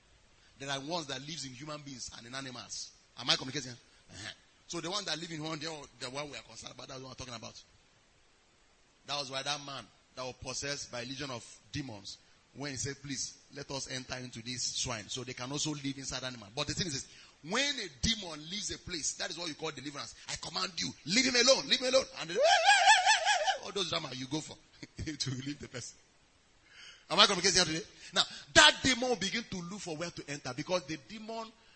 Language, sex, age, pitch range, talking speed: English, male, 30-49, 130-210 Hz, 220 wpm